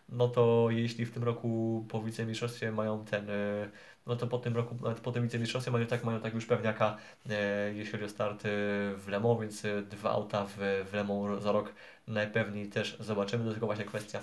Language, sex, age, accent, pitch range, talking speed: Polish, male, 20-39, native, 105-120 Hz, 200 wpm